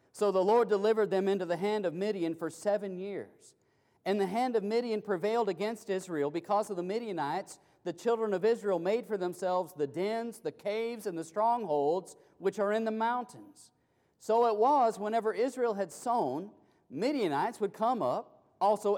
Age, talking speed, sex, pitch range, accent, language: 40-59, 175 wpm, male, 175-225 Hz, American, English